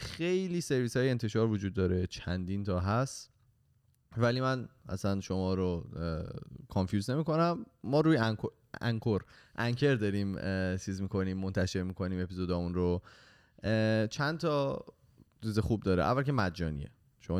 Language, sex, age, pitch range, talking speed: Persian, male, 20-39, 90-115 Hz, 125 wpm